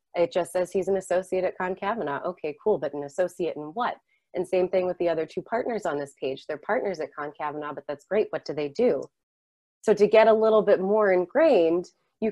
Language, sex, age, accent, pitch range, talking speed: English, female, 30-49, American, 160-210 Hz, 225 wpm